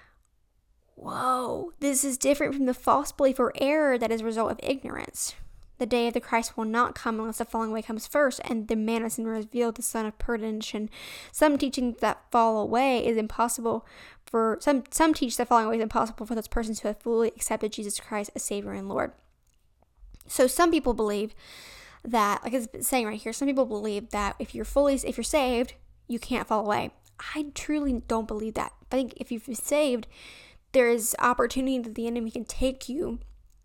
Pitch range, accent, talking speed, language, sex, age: 225-270 Hz, American, 200 wpm, English, female, 10-29